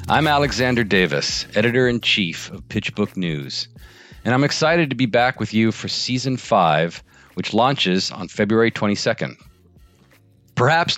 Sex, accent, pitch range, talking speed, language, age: male, American, 85-115 Hz, 130 wpm, English, 40-59